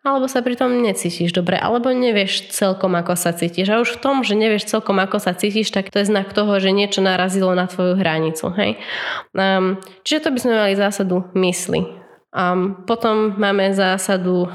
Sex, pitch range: female, 180-205 Hz